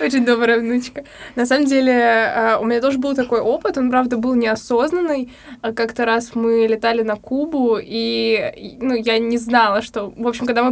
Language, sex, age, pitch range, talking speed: Russian, female, 20-39, 230-255 Hz, 180 wpm